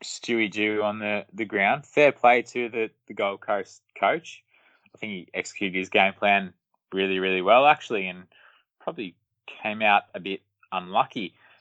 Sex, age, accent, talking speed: male, 20-39, Australian, 165 wpm